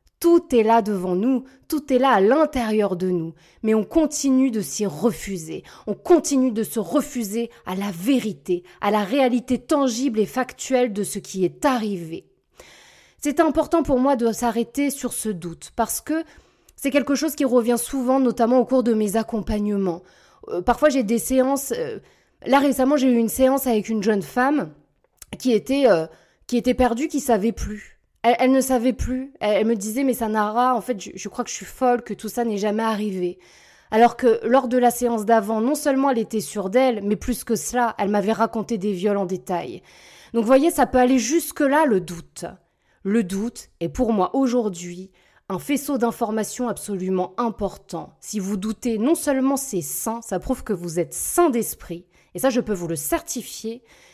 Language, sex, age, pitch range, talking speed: French, female, 20-39, 205-260 Hz, 195 wpm